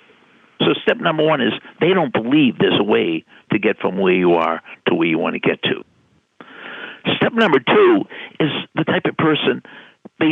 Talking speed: 190 wpm